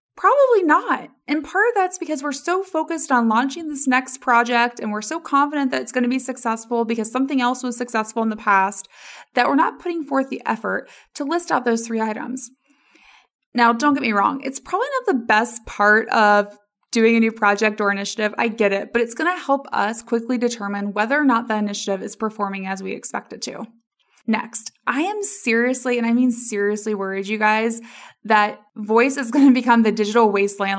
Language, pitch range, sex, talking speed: English, 215-280 Hz, female, 210 wpm